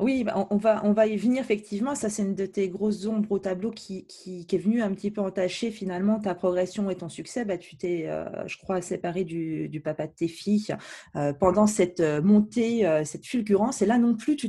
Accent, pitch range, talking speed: French, 180-220 Hz, 235 wpm